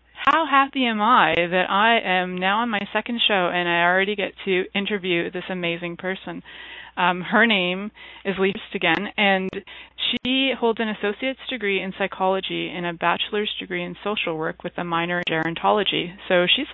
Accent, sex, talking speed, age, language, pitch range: American, female, 175 wpm, 30-49, English, 165-205 Hz